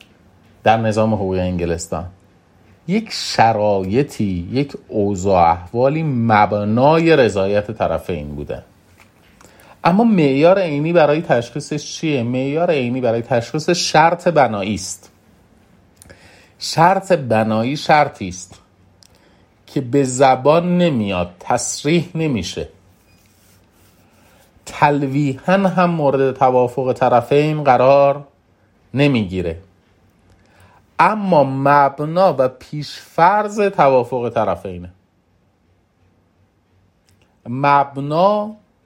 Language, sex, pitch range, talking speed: Persian, male, 95-145 Hz, 75 wpm